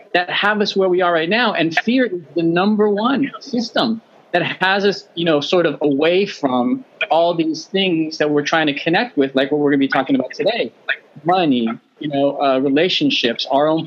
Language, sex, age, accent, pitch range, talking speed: English, male, 30-49, American, 145-200 Hz, 215 wpm